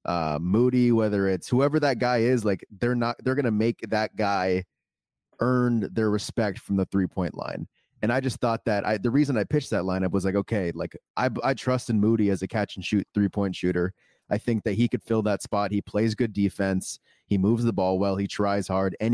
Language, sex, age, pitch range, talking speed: English, male, 30-49, 95-120 Hz, 225 wpm